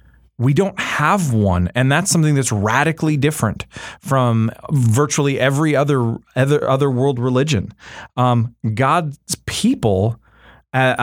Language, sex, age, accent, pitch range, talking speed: English, male, 30-49, American, 110-145 Hz, 120 wpm